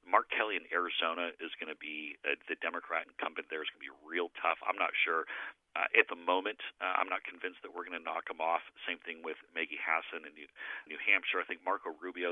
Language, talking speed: English, 240 wpm